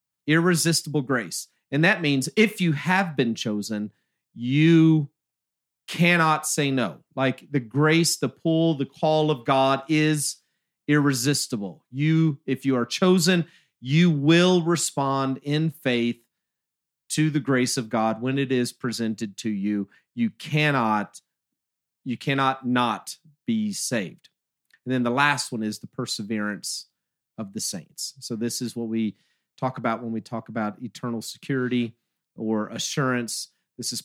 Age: 40-59